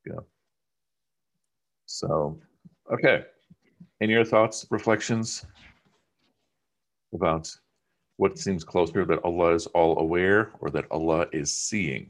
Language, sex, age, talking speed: English, male, 50-69, 105 wpm